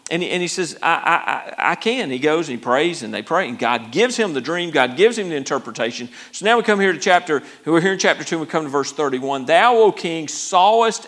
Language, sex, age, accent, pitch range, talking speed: English, male, 50-69, American, 135-185 Hz, 260 wpm